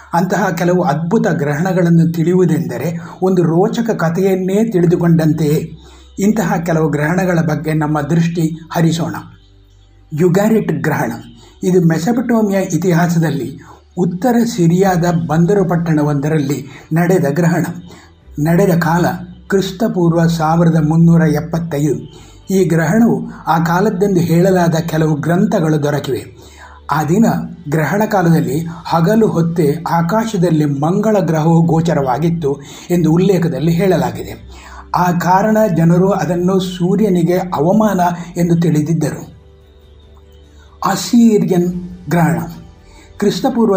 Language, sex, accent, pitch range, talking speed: Kannada, male, native, 155-190 Hz, 90 wpm